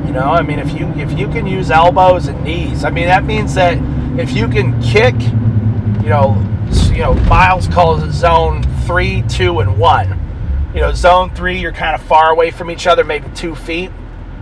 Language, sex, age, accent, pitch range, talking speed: English, male, 30-49, American, 105-155 Hz, 195 wpm